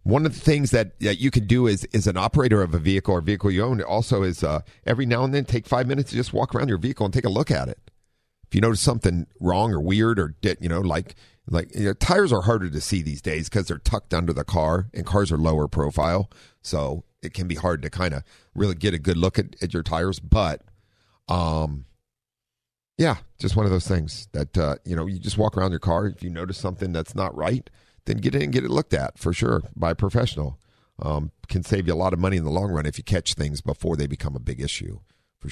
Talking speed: 260 wpm